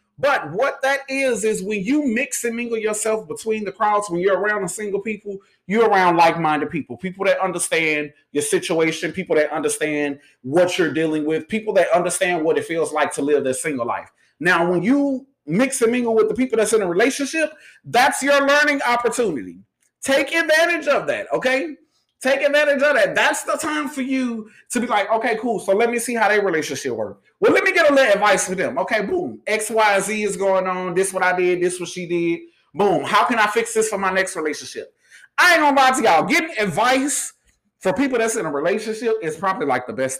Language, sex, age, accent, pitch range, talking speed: English, male, 30-49, American, 185-275 Hz, 220 wpm